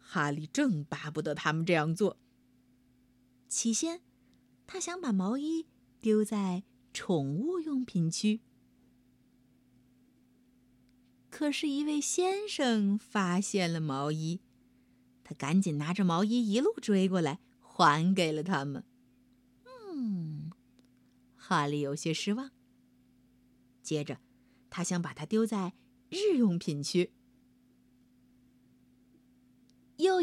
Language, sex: Chinese, female